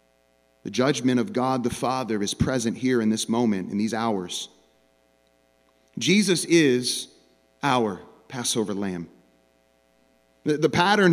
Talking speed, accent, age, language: 125 wpm, American, 40-59, English